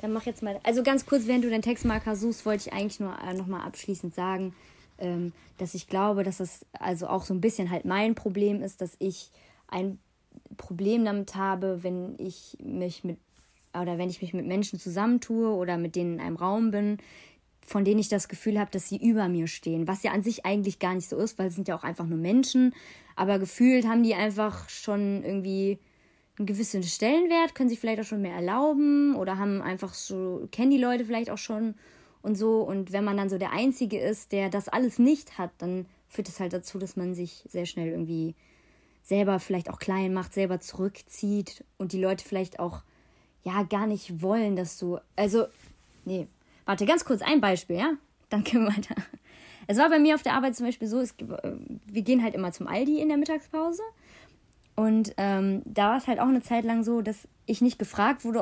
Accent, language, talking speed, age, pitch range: German, German, 210 wpm, 20-39, 190-235 Hz